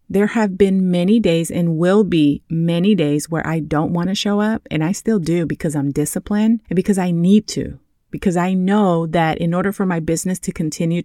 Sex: female